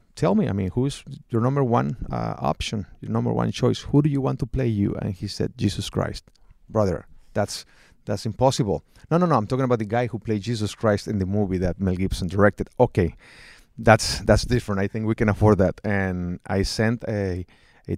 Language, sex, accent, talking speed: English, male, Mexican, 215 wpm